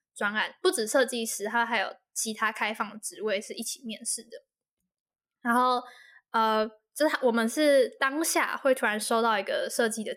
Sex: female